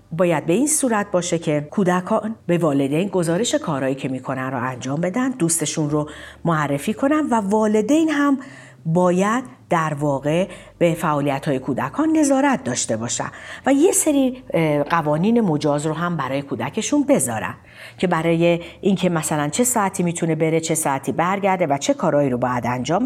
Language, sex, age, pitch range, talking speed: Persian, female, 50-69, 145-225 Hz, 155 wpm